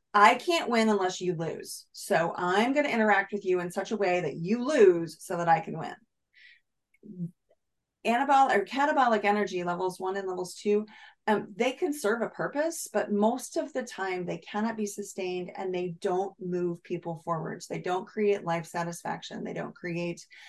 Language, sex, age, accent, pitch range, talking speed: English, female, 30-49, American, 170-210 Hz, 180 wpm